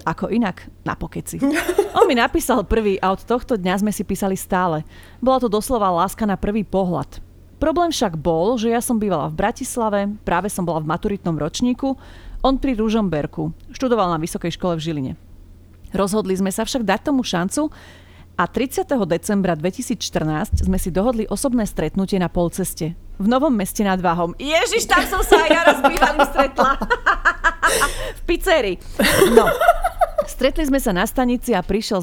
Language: Slovak